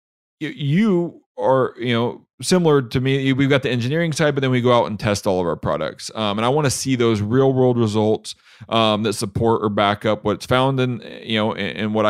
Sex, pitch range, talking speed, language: male, 105-125 Hz, 230 wpm, English